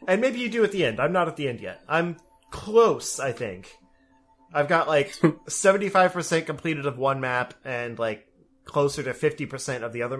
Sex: male